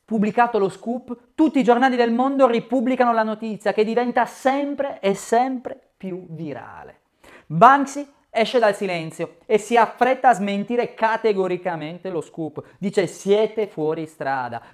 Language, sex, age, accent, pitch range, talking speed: Italian, male, 30-49, native, 165-225 Hz, 140 wpm